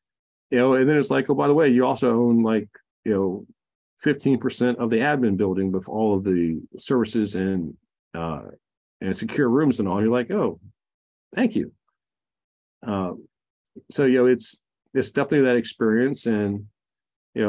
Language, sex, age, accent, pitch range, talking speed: English, male, 40-59, American, 105-130 Hz, 175 wpm